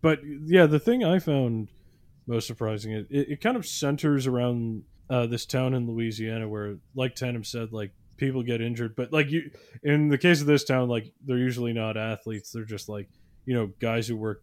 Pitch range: 105-130 Hz